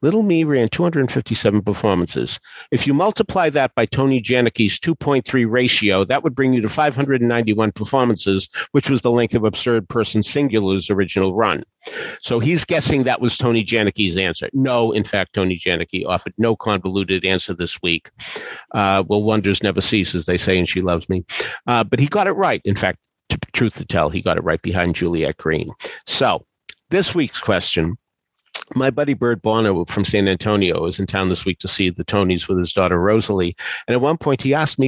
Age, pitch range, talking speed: 50-69, 100-130 Hz, 190 wpm